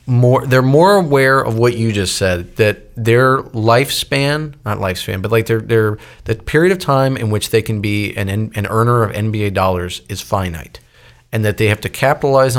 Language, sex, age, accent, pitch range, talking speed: English, male, 40-59, American, 100-125 Hz, 195 wpm